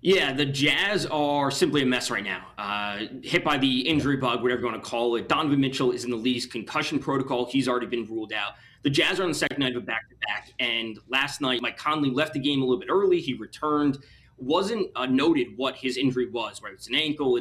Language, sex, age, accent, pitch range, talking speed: English, male, 20-39, American, 120-145 Hz, 240 wpm